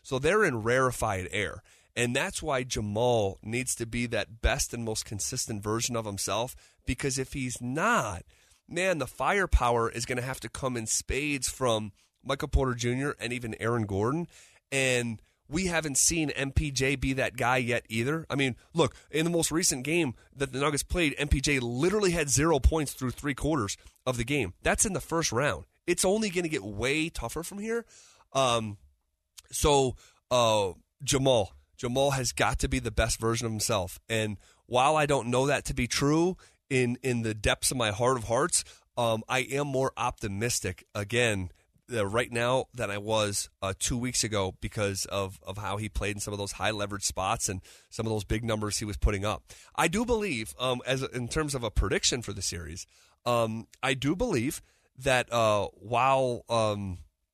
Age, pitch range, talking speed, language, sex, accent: 30-49, 105-135 Hz, 190 wpm, English, male, American